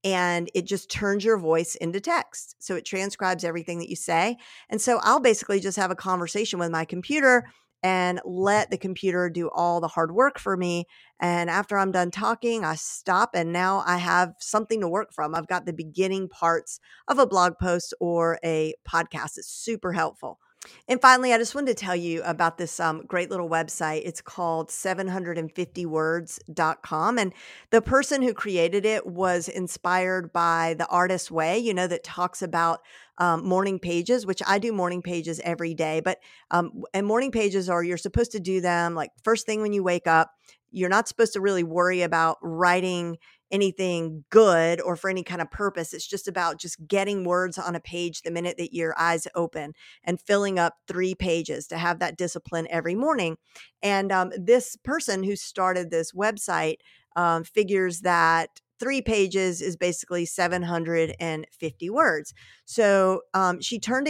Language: English